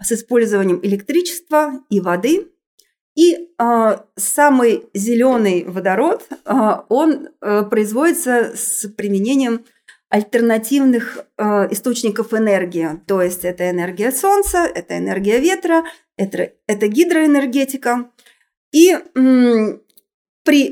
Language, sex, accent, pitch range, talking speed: Russian, female, native, 205-280 Hz, 100 wpm